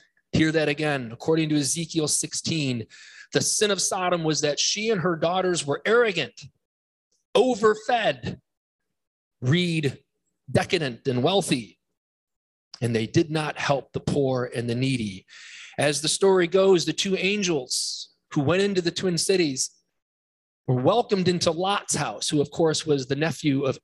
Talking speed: 150 wpm